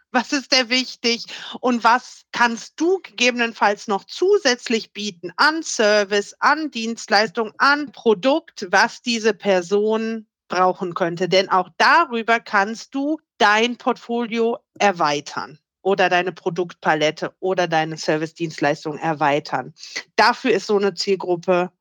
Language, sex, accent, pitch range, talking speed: German, female, German, 190-290 Hz, 120 wpm